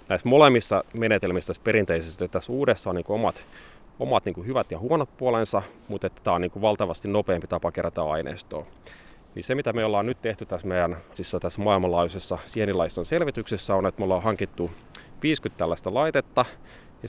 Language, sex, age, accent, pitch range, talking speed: Finnish, male, 30-49, native, 90-105 Hz, 170 wpm